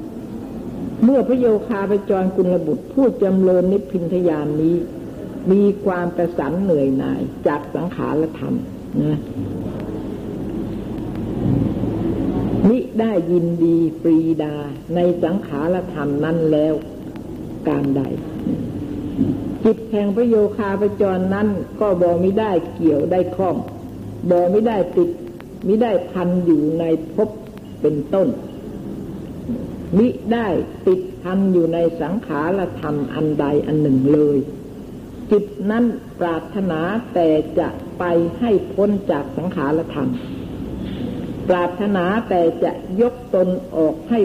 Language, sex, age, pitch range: Thai, female, 60-79, 160-200 Hz